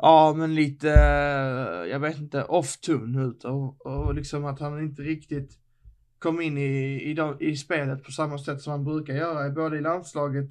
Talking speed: 185 wpm